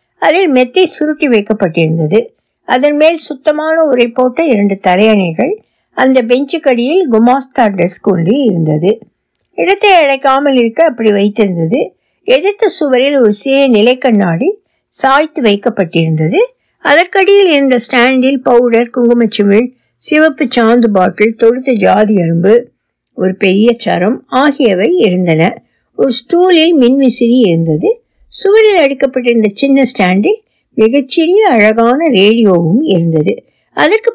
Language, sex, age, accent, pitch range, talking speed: Tamil, female, 60-79, native, 205-295 Hz, 80 wpm